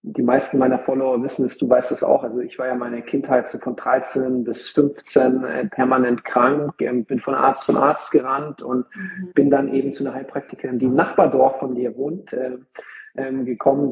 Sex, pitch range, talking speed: male, 130-150 Hz, 185 wpm